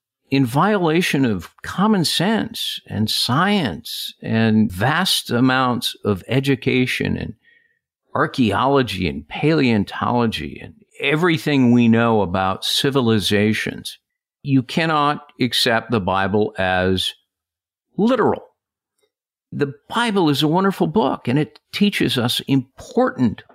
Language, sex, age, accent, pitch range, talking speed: English, male, 50-69, American, 100-150 Hz, 100 wpm